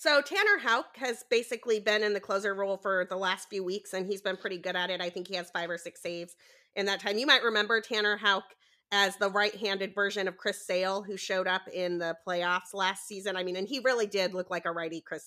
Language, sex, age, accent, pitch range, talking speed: English, female, 30-49, American, 180-215 Hz, 250 wpm